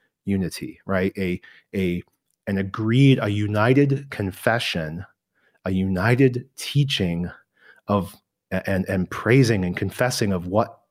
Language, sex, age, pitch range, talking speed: English, male, 30-49, 95-125 Hz, 110 wpm